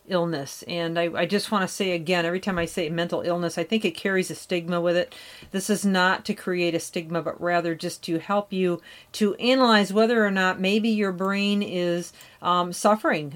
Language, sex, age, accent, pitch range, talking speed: English, female, 40-59, American, 175-215 Hz, 210 wpm